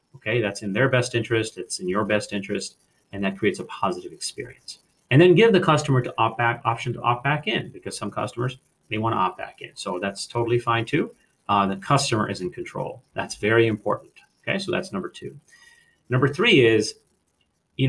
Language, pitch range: English, 105-135 Hz